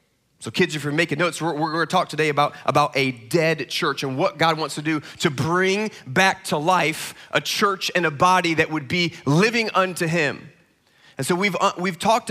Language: English